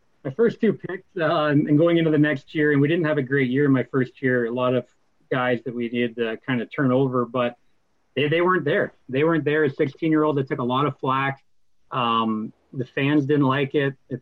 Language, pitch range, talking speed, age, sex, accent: English, 125-150 Hz, 240 wpm, 30-49, male, American